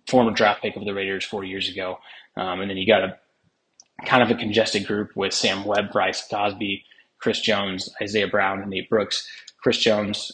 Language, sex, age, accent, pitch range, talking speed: English, male, 20-39, American, 95-110 Hz, 195 wpm